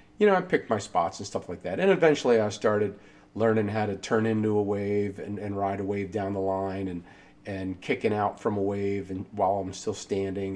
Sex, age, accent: male, 40-59, American